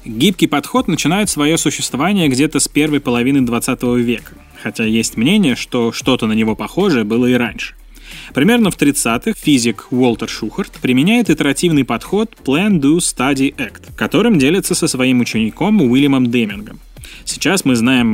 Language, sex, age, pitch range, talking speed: Russian, male, 20-39, 115-155 Hz, 140 wpm